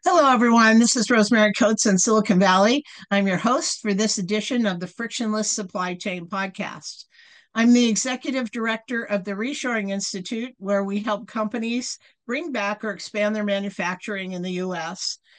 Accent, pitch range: American, 195-240 Hz